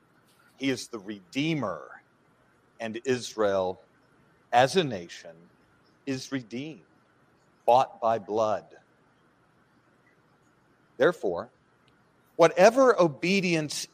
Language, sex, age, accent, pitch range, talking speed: English, male, 40-59, American, 135-185 Hz, 75 wpm